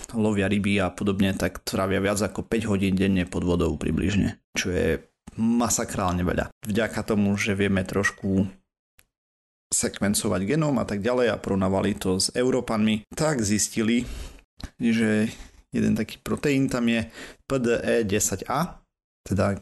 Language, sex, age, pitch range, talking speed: Slovak, male, 30-49, 100-115 Hz, 130 wpm